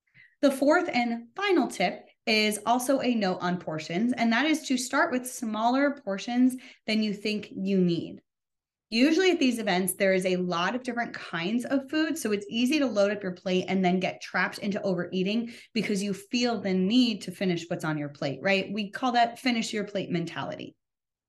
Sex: female